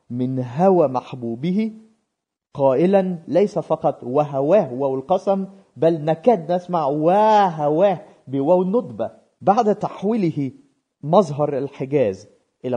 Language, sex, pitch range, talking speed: Malay, male, 115-180 Hz, 95 wpm